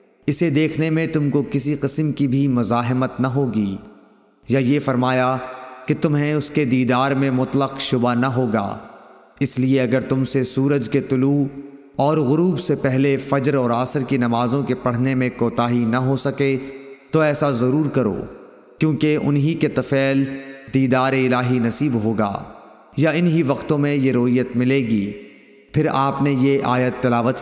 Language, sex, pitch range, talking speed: Urdu, male, 125-145 Hz, 165 wpm